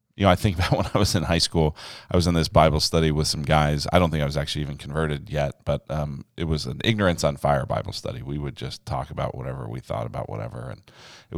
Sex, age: male, 40-59